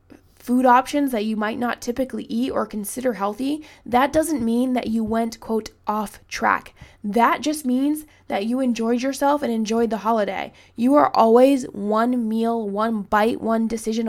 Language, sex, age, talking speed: English, female, 20-39, 170 wpm